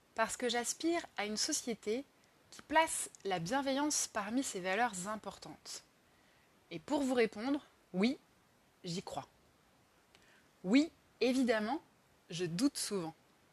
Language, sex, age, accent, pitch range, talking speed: French, female, 20-39, French, 190-270 Hz, 115 wpm